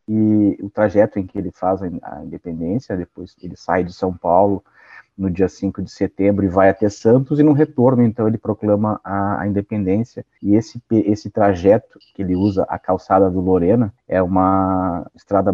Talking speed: 180 wpm